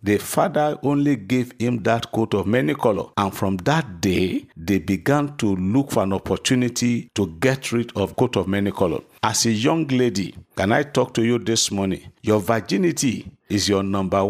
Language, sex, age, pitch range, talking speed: English, male, 50-69, 100-135 Hz, 190 wpm